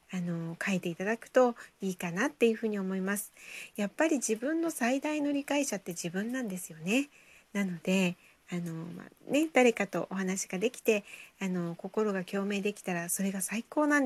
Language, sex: Japanese, female